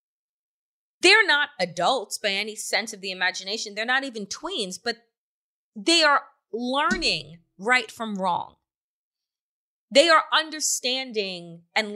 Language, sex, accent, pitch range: English, female, American, 215-325 Hz